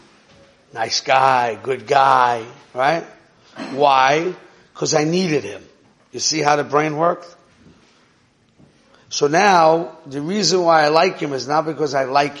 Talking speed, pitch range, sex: 140 wpm, 135-165 Hz, male